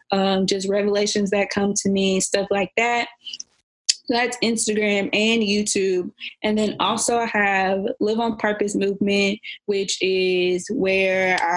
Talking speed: 135 wpm